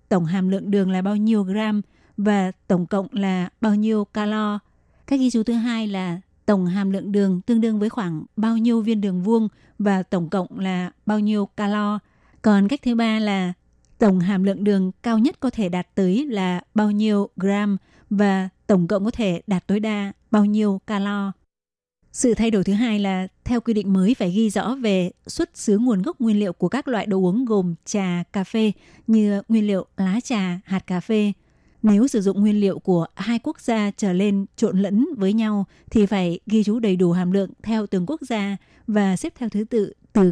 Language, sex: Vietnamese, female